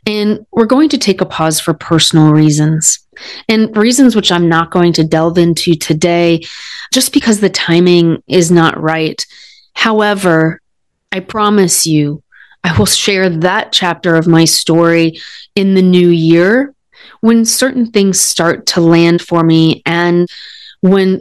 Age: 30-49